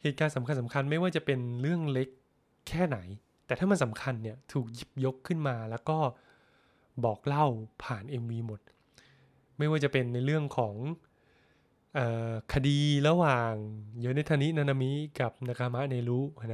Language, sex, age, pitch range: Thai, male, 20-39, 115-145 Hz